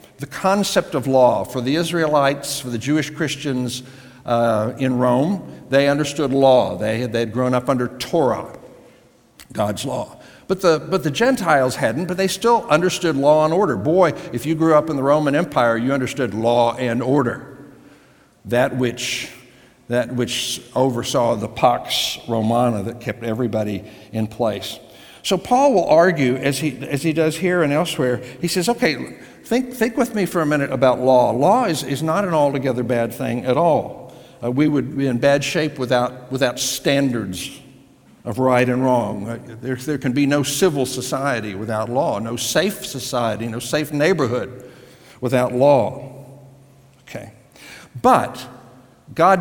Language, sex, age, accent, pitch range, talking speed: English, male, 60-79, American, 125-150 Hz, 160 wpm